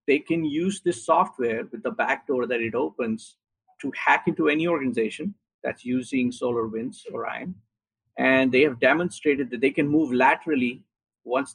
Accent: Indian